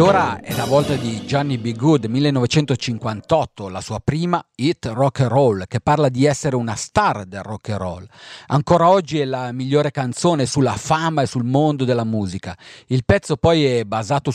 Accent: native